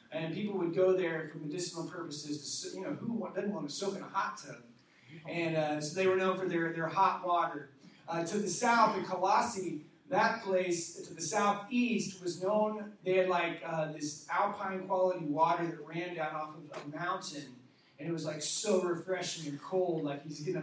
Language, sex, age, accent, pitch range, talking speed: English, male, 30-49, American, 155-195 Hz, 200 wpm